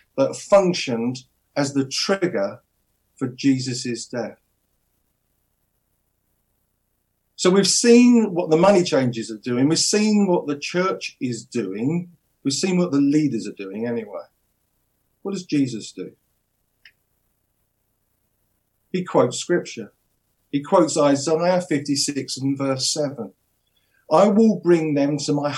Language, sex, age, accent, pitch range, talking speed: English, male, 50-69, British, 110-160 Hz, 120 wpm